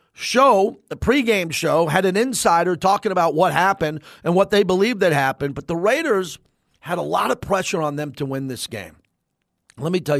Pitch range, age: 155-200 Hz, 40-59